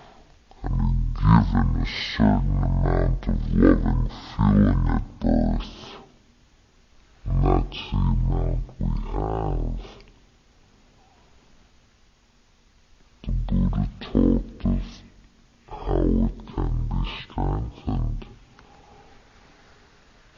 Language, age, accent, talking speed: English, 50-69, American, 75 wpm